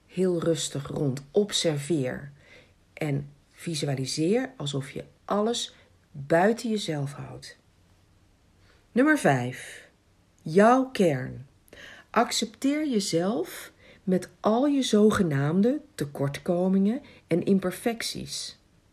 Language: Dutch